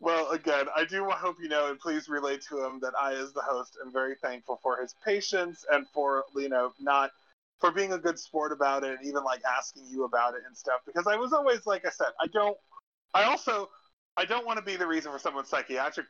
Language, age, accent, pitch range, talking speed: English, 30-49, American, 125-175 Hz, 240 wpm